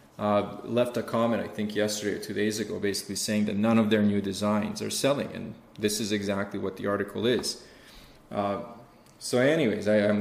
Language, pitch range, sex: English, 105-115 Hz, male